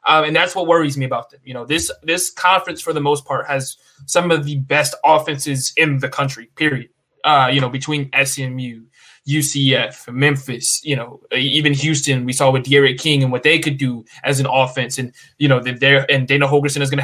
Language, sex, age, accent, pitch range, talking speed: English, male, 20-39, American, 135-155 Hz, 210 wpm